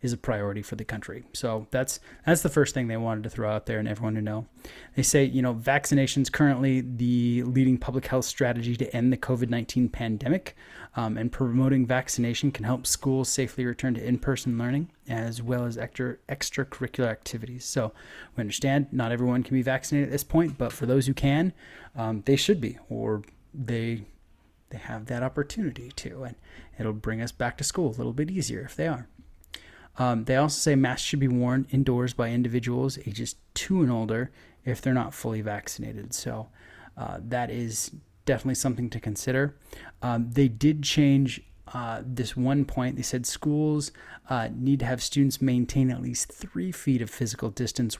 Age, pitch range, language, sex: 20-39, 115-135 Hz, English, male